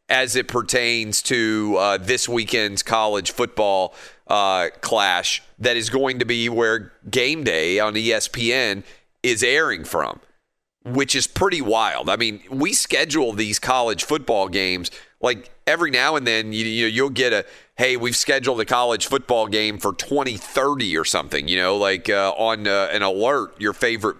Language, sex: English, male